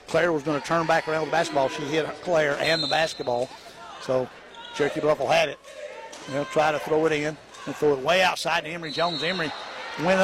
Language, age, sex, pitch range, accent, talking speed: English, 50-69, male, 150-175 Hz, American, 215 wpm